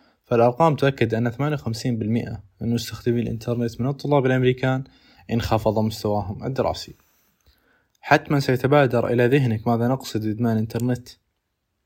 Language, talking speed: Arabic, 105 wpm